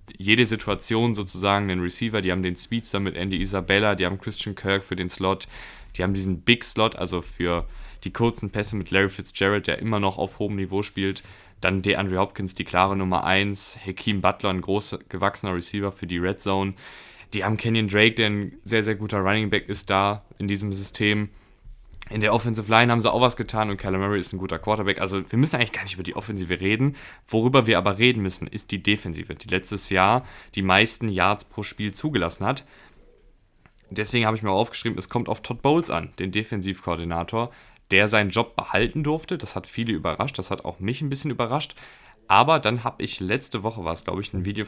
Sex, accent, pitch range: male, German, 95-110 Hz